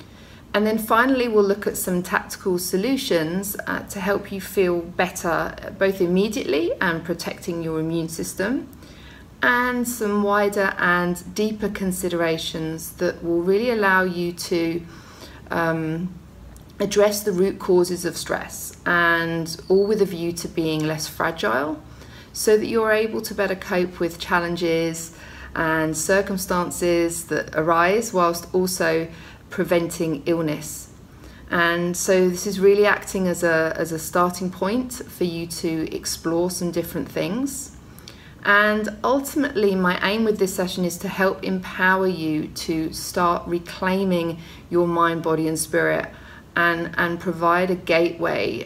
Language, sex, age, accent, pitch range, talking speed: English, female, 40-59, British, 165-195 Hz, 135 wpm